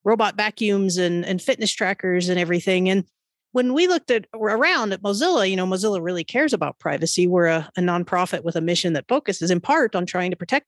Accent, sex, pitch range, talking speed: American, female, 175-230 Hz, 215 wpm